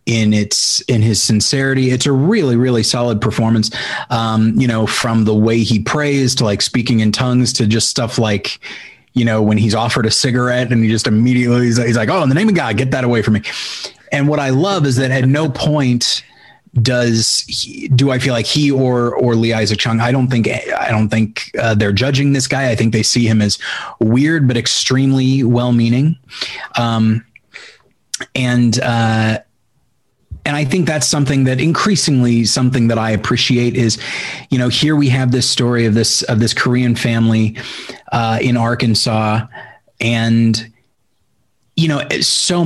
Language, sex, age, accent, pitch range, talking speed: English, male, 30-49, American, 115-130 Hz, 180 wpm